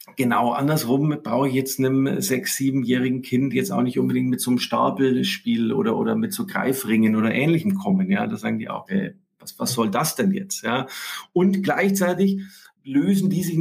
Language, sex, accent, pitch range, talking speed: German, male, German, 135-195 Hz, 185 wpm